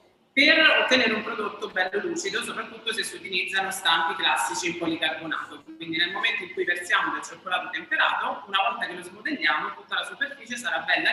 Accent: native